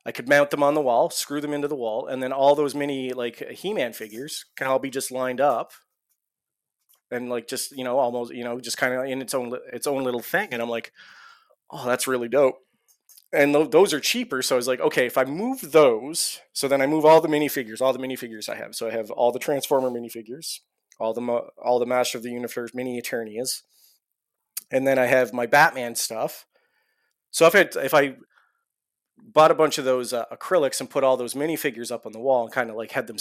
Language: English